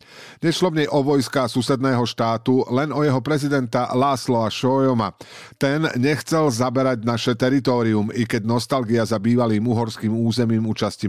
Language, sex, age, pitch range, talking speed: Slovak, male, 50-69, 100-130 Hz, 140 wpm